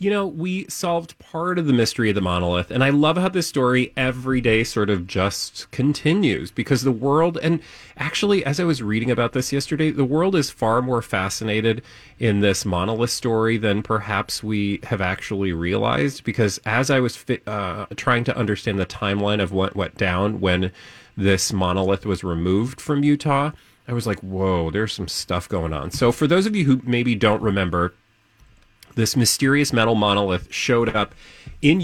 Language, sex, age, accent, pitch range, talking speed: English, male, 30-49, American, 100-140 Hz, 185 wpm